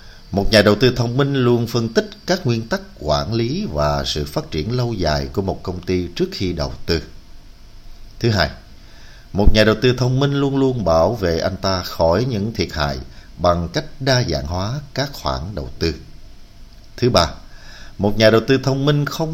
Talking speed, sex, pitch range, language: 200 wpm, male, 75-115 Hz, Vietnamese